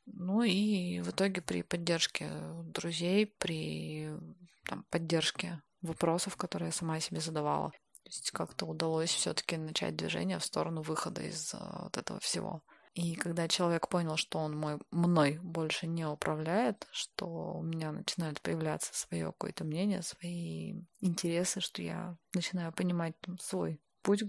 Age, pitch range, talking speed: 20-39, 150-185 Hz, 145 wpm